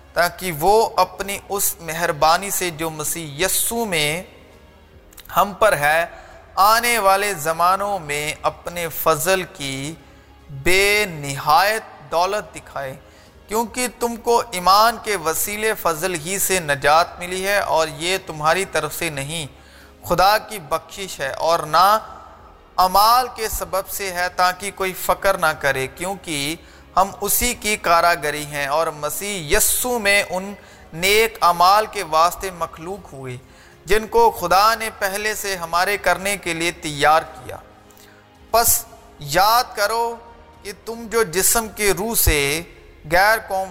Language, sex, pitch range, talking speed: Urdu, male, 155-205 Hz, 135 wpm